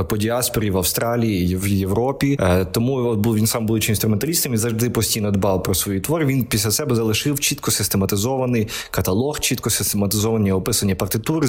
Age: 20-39